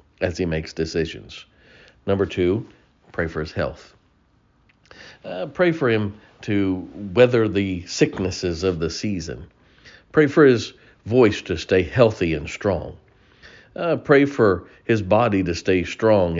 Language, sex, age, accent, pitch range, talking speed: English, male, 50-69, American, 85-110 Hz, 140 wpm